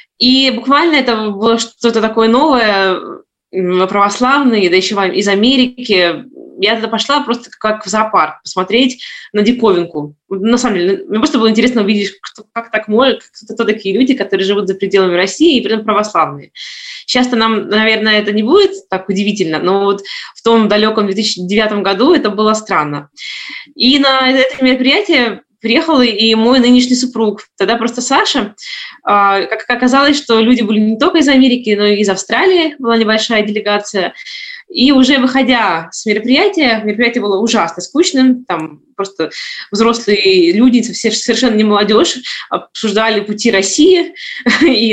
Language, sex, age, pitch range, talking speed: Russian, female, 20-39, 205-260 Hz, 150 wpm